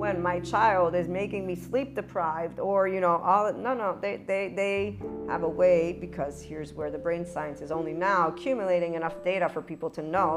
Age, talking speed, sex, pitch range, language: 40-59, 210 wpm, female, 160-185 Hz, English